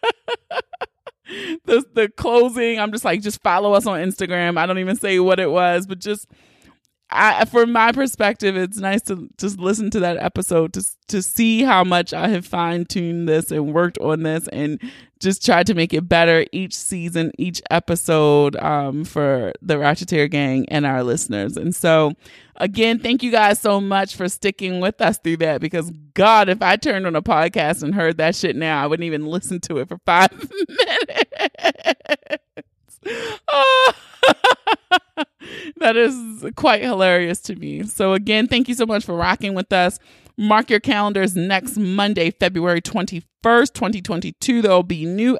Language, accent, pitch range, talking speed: English, American, 170-230 Hz, 170 wpm